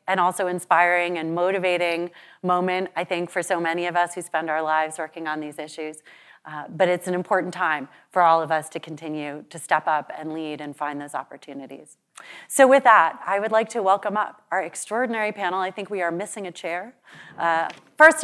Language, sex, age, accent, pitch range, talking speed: English, female, 30-49, American, 175-225 Hz, 205 wpm